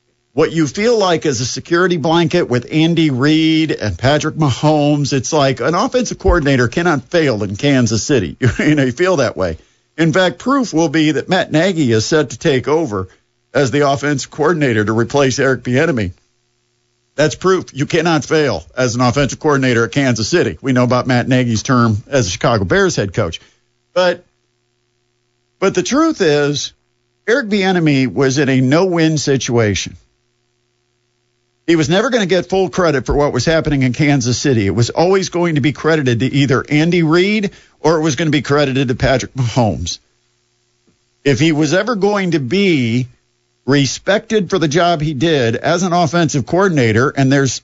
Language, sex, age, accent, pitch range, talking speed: English, male, 50-69, American, 120-160 Hz, 180 wpm